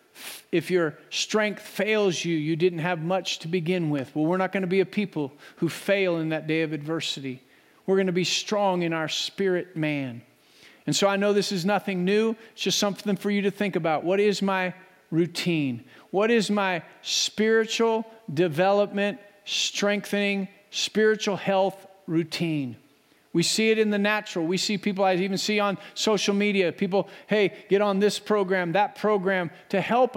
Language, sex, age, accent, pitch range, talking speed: English, male, 50-69, American, 165-205 Hz, 180 wpm